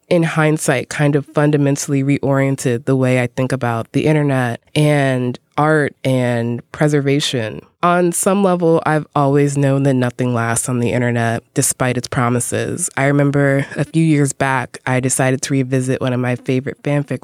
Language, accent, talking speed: English, American, 165 wpm